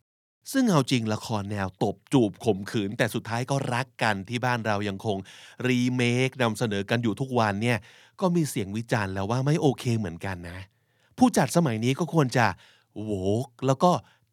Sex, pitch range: male, 110-155 Hz